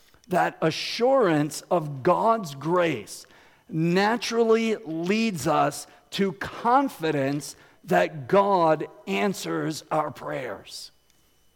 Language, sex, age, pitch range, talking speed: English, male, 50-69, 150-200 Hz, 80 wpm